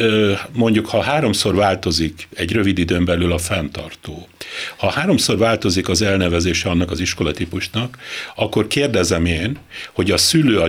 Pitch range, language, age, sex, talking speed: 90-115 Hz, Hungarian, 60-79, male, 140 wpm